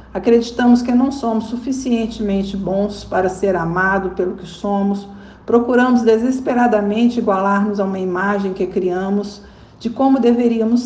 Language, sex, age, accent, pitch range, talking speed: Portuguese, female, 60-79, Brazilian, 200-240 Hz, 125 wpm